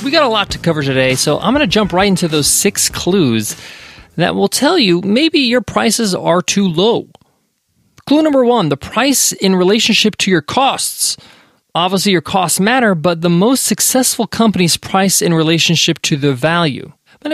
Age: 20-39